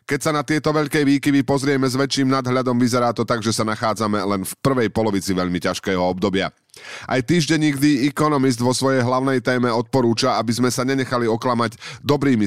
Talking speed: 185 wpm